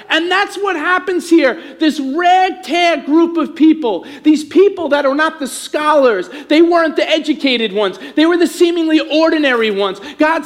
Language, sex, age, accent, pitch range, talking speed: English, male, 40-59, American, 255-320 Hz, 165 wpm